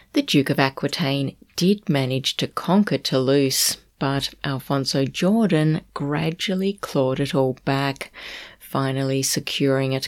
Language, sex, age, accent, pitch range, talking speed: English, female, 30-49, Australian, 135-175 Hz, 120 wpm